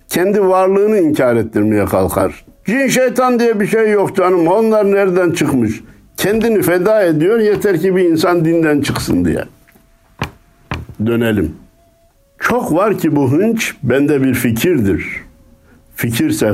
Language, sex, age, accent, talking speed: Turkish, male, 60-79, native, 125 wpm